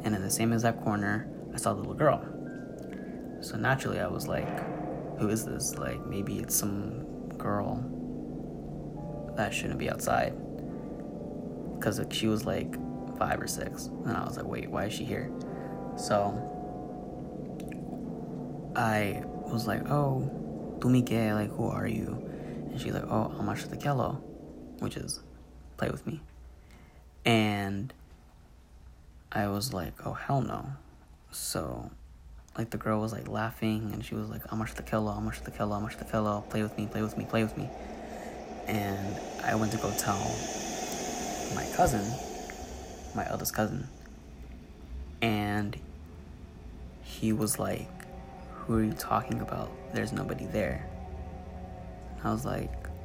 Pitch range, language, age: 75-110 Hz, English, 20-39